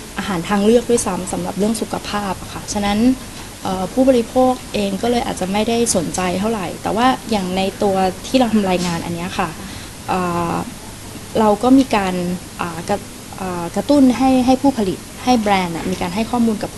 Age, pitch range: 20-39, 180-225 Hz